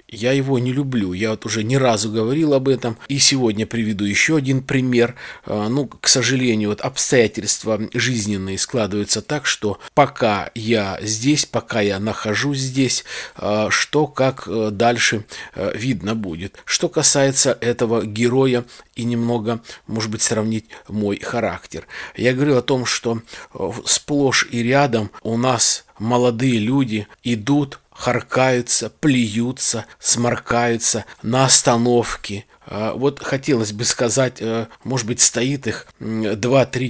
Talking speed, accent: 125 wpm, native